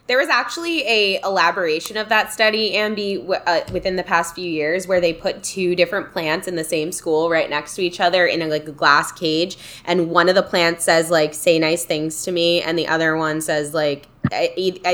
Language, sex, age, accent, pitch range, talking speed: English, female, 20-39, American, 155-185 Hz, 225 wpm